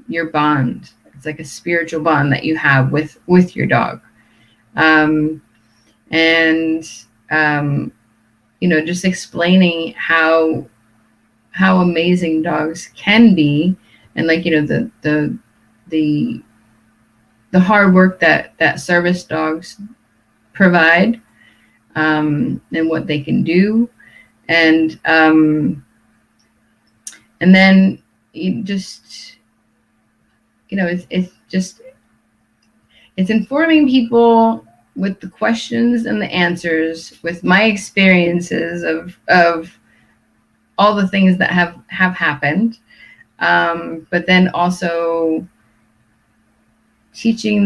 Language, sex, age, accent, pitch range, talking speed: English, female, 30-49, American, 110-185 Hz, 105 wpm